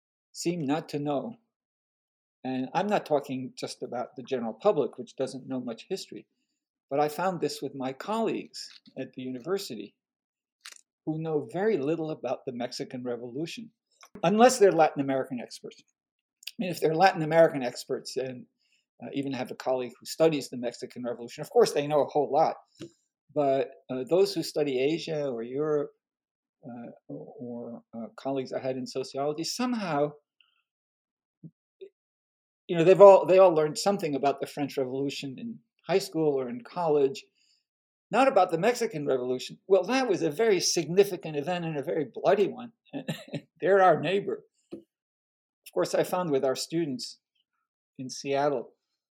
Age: 50-69